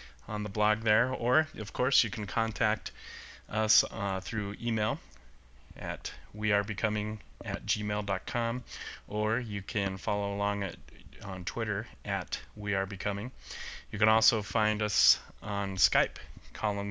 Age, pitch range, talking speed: 30-49, 100-115 Hz, 130 wpm